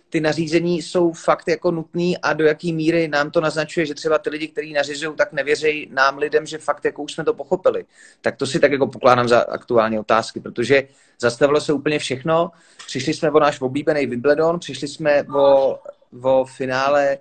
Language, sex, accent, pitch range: Czech, male, native, 140-165 Hz